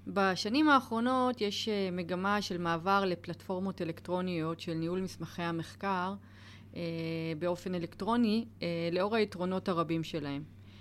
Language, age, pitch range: Hebrew, 30-49, 165-200 Hz